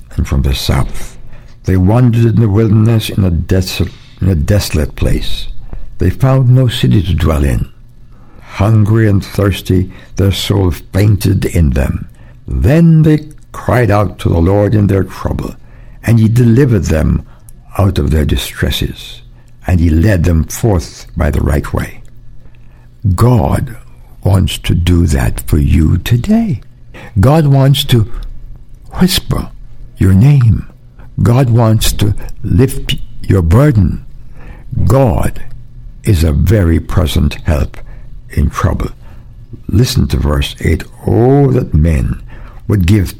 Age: 60-79